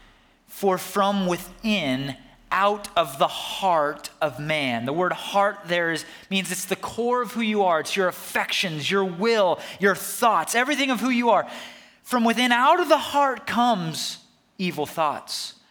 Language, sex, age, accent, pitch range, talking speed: English, male, 30-49, American, 155-225 Hz, 165 wpm